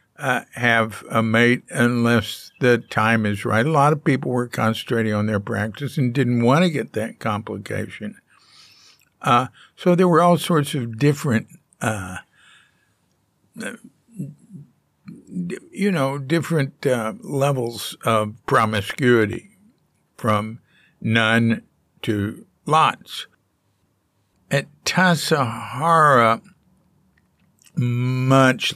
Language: English